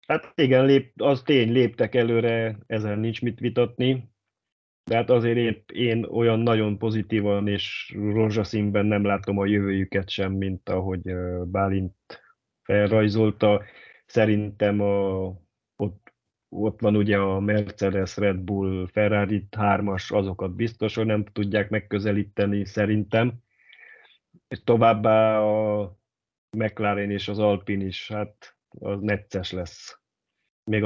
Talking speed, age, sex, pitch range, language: 115 wpm, 30-49, male, 100-110 Hz, Hungarian